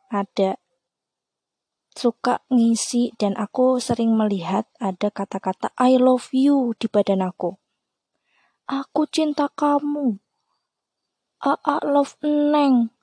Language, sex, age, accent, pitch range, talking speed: Indonesian, female, 20-39, native, 200-280 Hz, 95 wpm